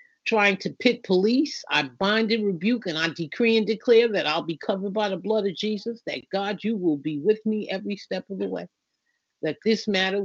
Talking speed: 215 wpm